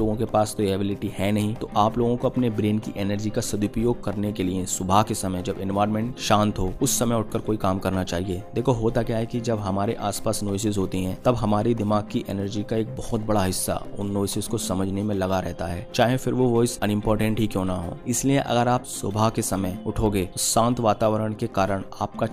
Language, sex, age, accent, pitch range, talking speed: Hindi, male, 20-39, native, 95-115 Hz, 230 wpm